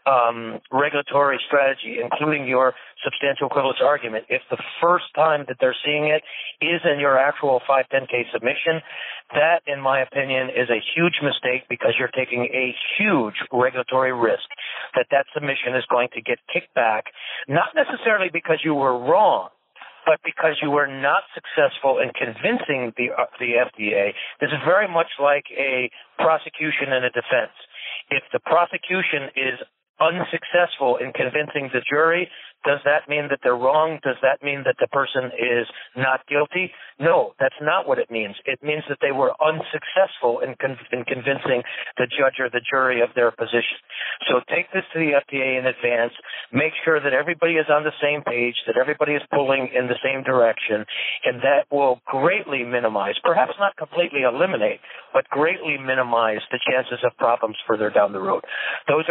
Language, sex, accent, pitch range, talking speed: English, male, American, 125-155 Hz, 170 wpm